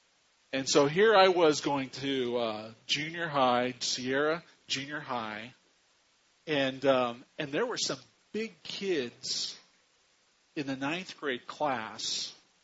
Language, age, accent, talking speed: English, 50-69, American, 125 wpm